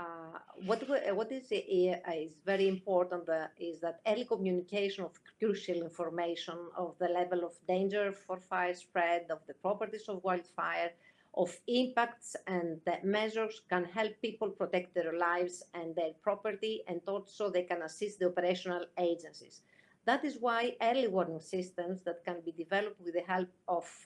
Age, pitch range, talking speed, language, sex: 50-69, 170-210 Hz, 160 wpm, English, female